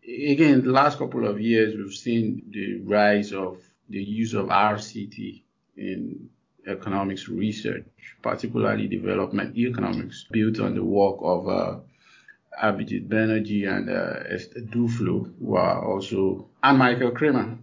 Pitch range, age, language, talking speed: 105-120 Hz, 50-69, English, 130 wpm